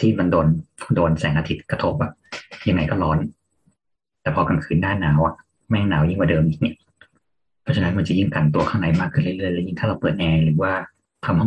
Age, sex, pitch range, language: 30-49, male, 75-100 Hz, Thai